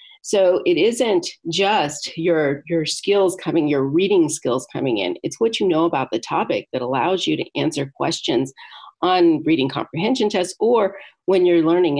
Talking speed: 170 wpm